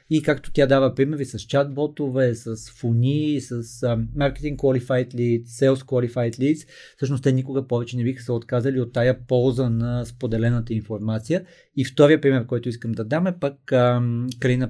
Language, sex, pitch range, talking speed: Bulgarian, male, 120-135 Hz, 165 wpm